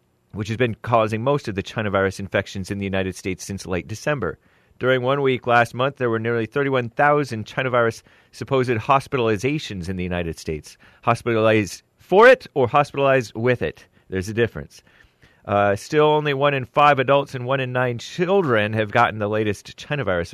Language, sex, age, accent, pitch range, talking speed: English, male, 30-49, American, 95-130 Hz, 185 wpm